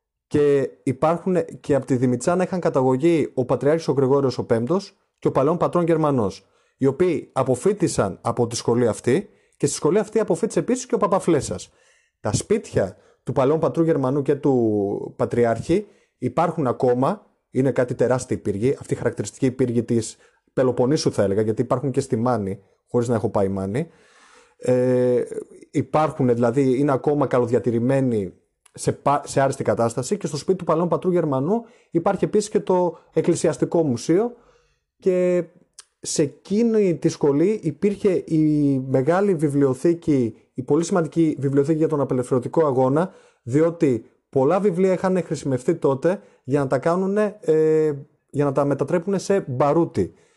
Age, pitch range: 30-49, 130-175 Hz